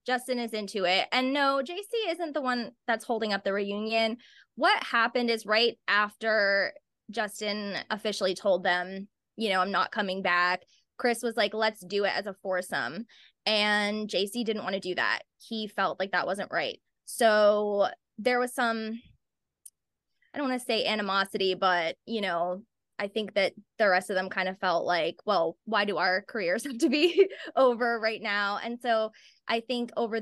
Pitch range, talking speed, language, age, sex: 195-235 Hz, 185 wpm, English, 20-39, female